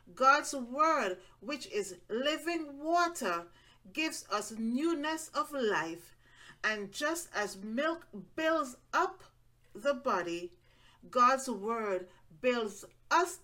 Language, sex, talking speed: English, female, 105 wpm